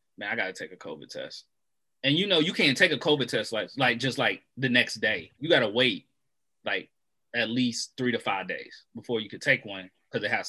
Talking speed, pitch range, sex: 240 wpm, 110-125 Hz, male